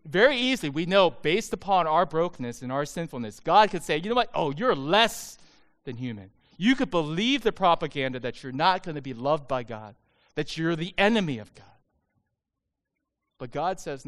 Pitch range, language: 120-165 Hz, English